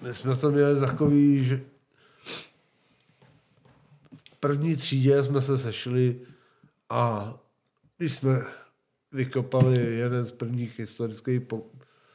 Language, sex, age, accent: Czech, male, 50-69, native